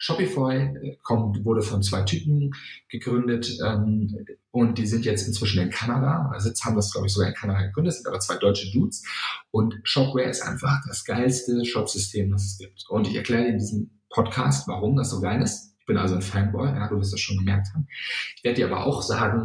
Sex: male